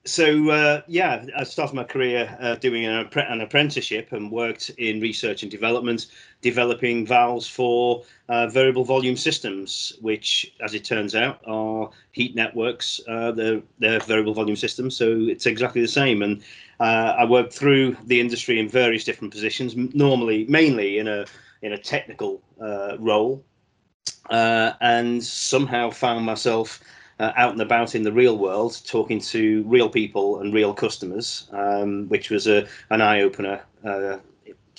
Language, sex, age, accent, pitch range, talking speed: English, male, 40-59, British, 105-125 Hz, 155 wpm